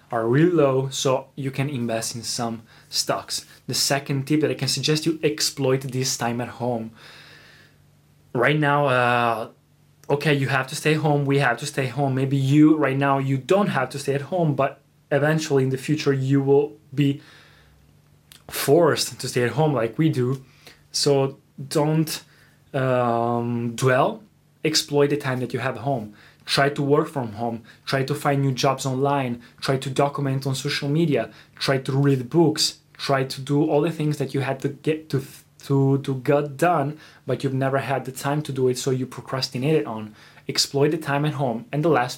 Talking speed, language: 190 wpm, Italian